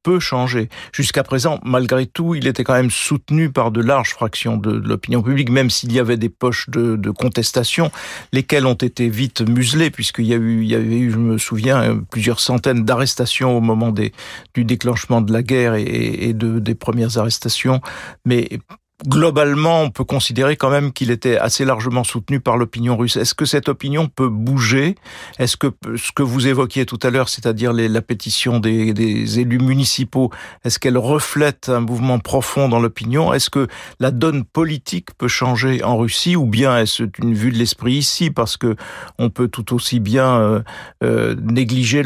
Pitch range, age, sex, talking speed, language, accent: 115-135 Hz, 50-69, male, 185 wpm, French, French